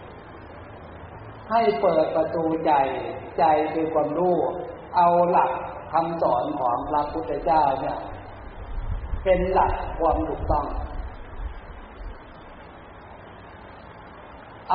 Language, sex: Thai, male